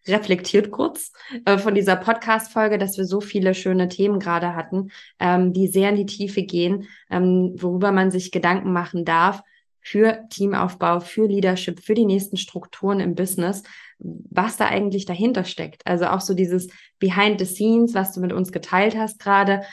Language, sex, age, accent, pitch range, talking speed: German, female, 20-39, German, 180-210 Hz, 165 wpm